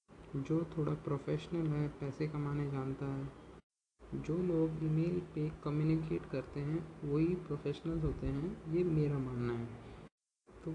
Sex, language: male, Hindi